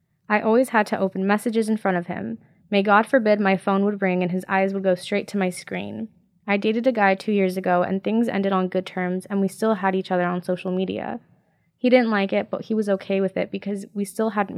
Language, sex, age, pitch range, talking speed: English, female, 20-39, 190-220 Hz, 255 wpm